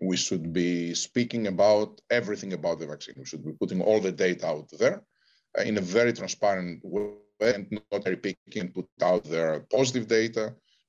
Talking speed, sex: 180 wpm, male